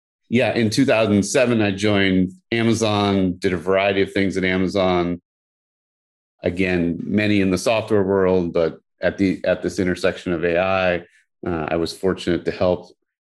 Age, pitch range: 30-49, 85-100 Hz